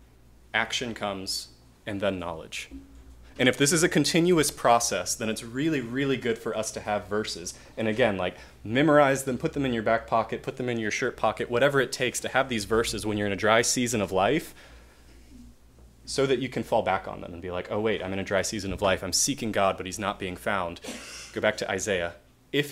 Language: English